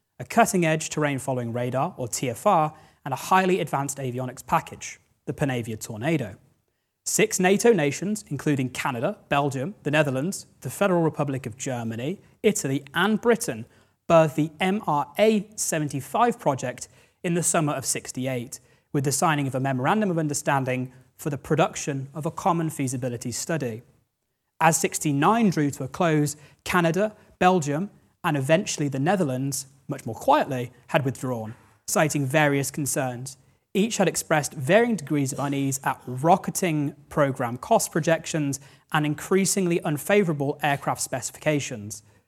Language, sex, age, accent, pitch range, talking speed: English, male, 30-49, British, 130-170 Hz, 135 wpm